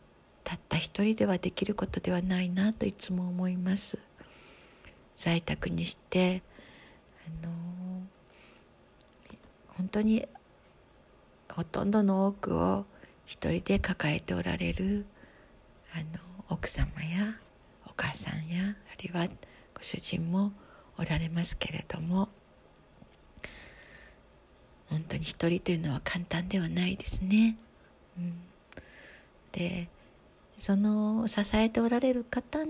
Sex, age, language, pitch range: female, 50-69, Japanese, 170-210 Hz